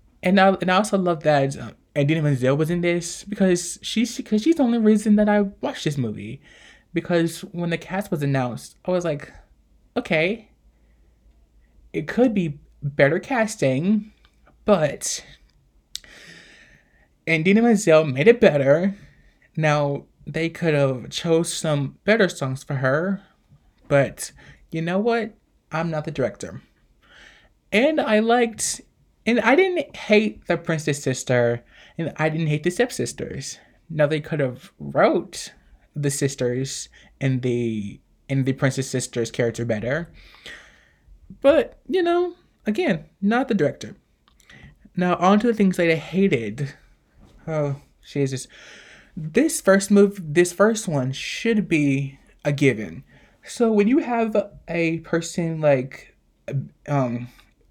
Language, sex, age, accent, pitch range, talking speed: English, male, 20-39, American, 140-200 Hz, 135 wpm